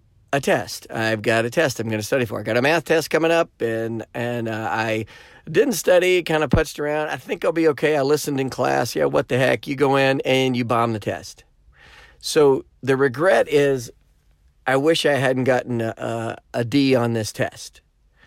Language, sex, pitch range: English, male, 115-140 Hz